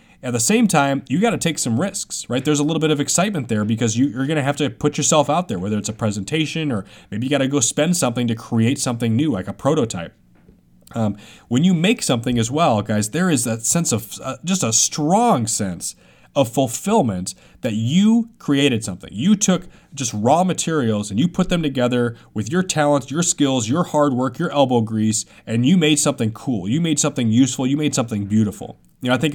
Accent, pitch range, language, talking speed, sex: American, 110-150 Hz, English, 225 wpm, male